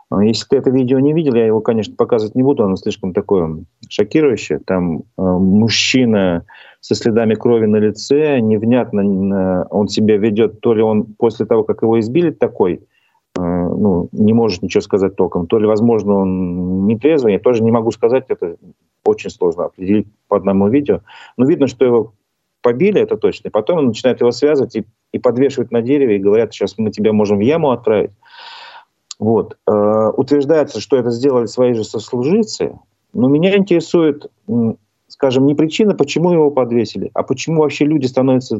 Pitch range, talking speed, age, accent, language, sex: 105-145 Hz, 175 wpm, 40-59, native, Russian, male